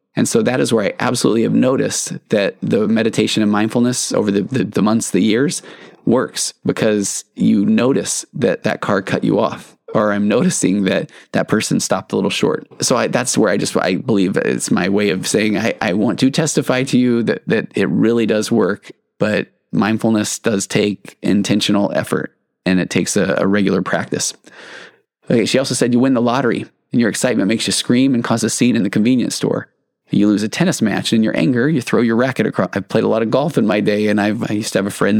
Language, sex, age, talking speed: English, male, 20-39, 225 wpm